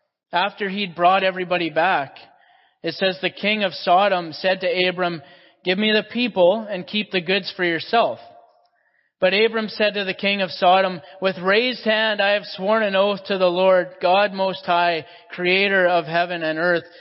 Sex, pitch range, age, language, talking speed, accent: male, 175-205 Hz, 30-49, English, 180 wpm, American